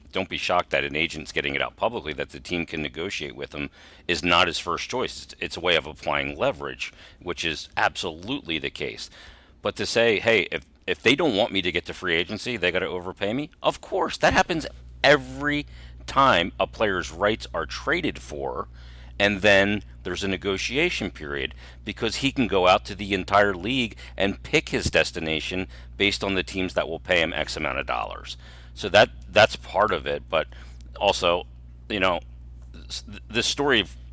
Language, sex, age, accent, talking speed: English, male, 40-59, American, 190 wpm